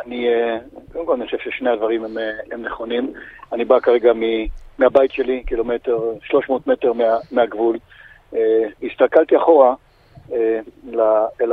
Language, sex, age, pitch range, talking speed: Hebrew, male, 50-69, 120-155 Hz, 120 wpm